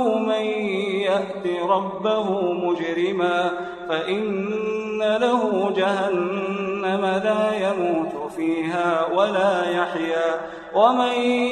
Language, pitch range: Arabic, 175-210 Hz